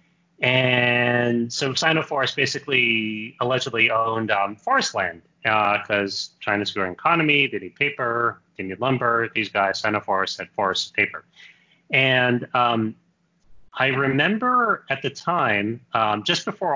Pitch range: 110-145 Hz